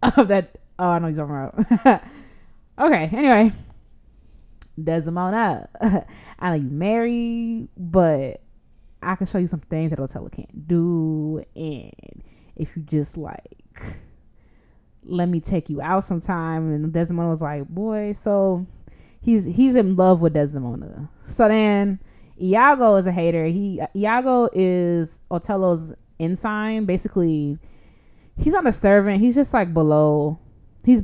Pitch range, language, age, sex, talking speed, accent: 165-215 Hz, English, 20-39, female, 135 wpm, American